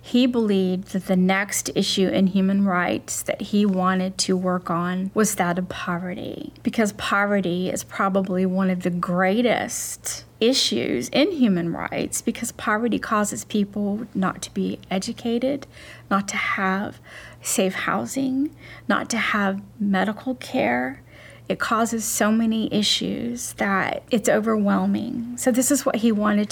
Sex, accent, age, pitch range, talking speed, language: female, American, 40-59, 190-235 Hz, 145 wpm, English